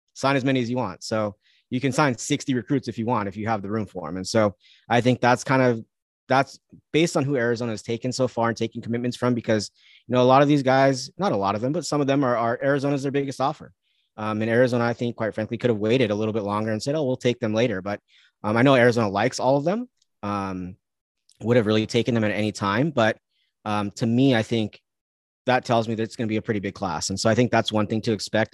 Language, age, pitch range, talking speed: English, 30-49, 105-125 Hz, 275 wpm